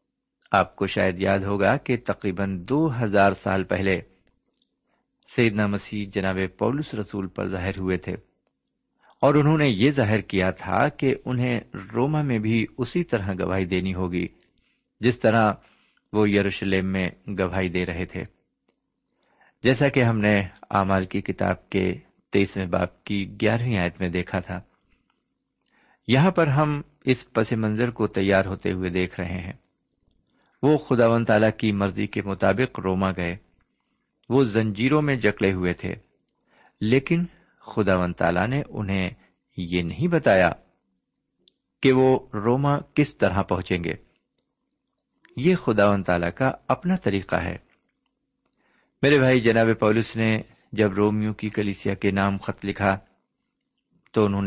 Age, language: 50-69, Urdu